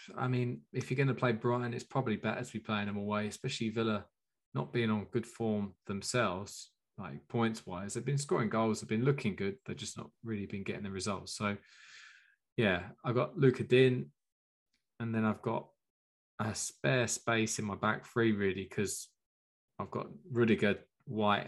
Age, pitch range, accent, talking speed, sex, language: 20-39, 105-125 Hz, British, 185 wpm, male, English